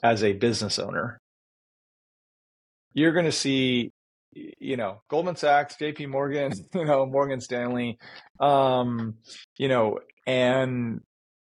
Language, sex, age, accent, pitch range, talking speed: English, male, 30-49, American, 110-130 Hz, 115 wpm